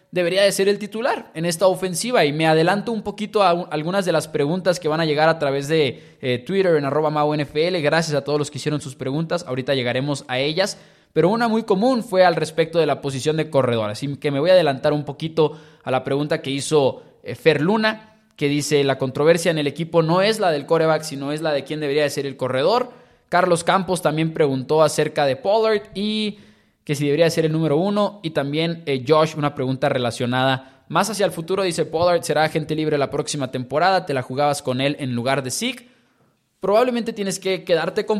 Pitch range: 140-185 Hz